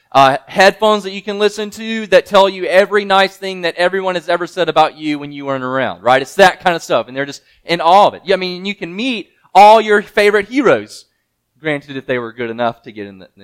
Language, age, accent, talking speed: English, 30-49, American, 250 wpm